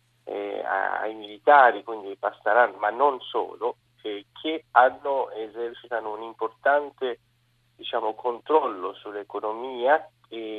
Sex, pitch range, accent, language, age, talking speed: male, 110-140 Hz, native, Italian, 40-59, 110 wpm